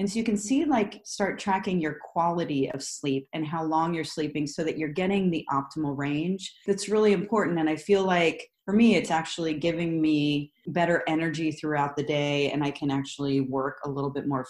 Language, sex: English, female